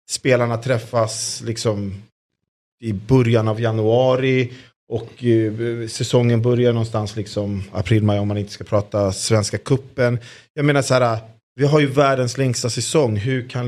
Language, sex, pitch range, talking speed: Swedish, male, 110-135 Hz, 145 wpm